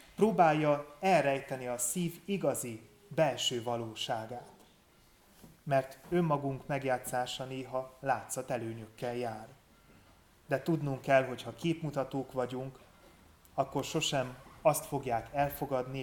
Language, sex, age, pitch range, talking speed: Hungarian, male, 30-49, 120-145 Hz, 95 wpm